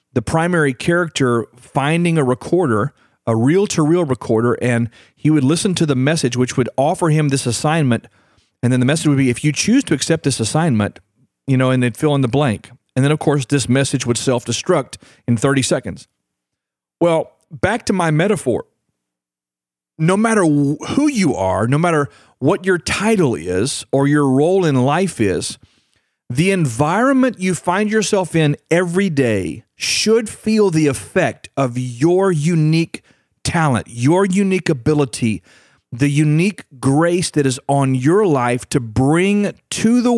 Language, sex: English, male